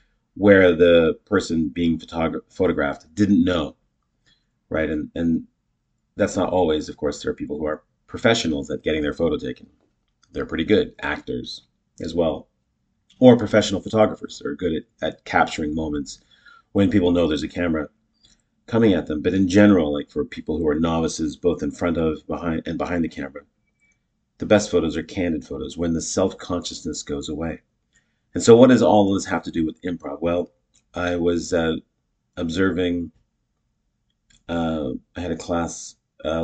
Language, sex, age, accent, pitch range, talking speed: English, male, 40-59, American, 80-105 Hz, 170 wpm